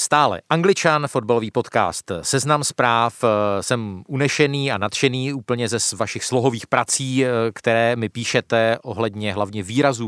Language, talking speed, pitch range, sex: Czech, 125 wpm, 110-145 Hz, male